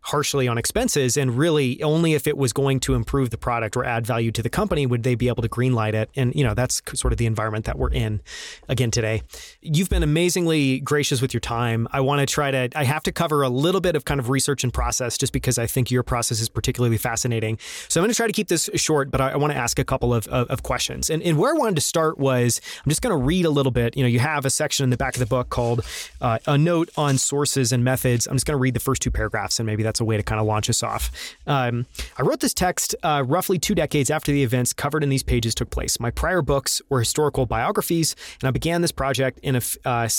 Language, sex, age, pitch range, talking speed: English, male, 30-49, 125-150 Hz, 275 wpm